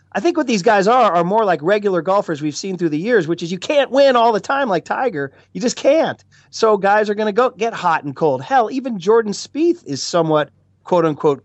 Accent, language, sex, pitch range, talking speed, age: American, English, male, 145-190 Hz, 240 wpm, 30-49